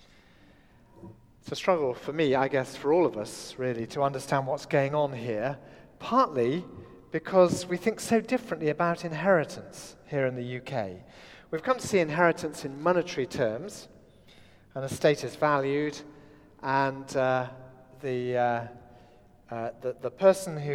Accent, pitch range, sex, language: British, 130-180 Hz, male, English